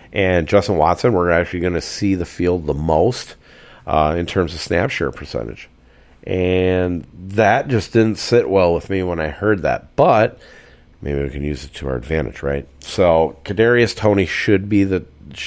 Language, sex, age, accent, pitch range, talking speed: English, male, 40-59, American, 80-100 Hz, 180 wpm